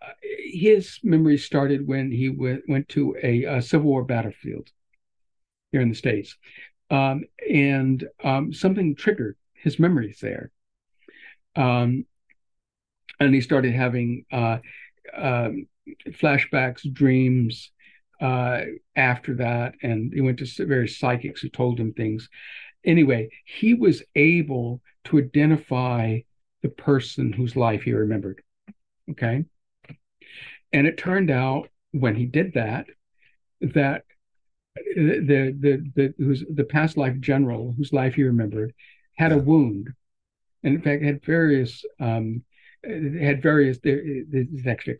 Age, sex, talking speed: 60-79, male, 125 wpm